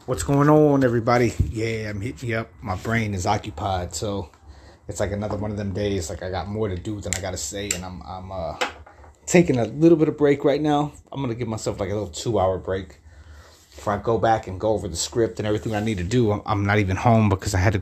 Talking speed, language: 255 wpm, English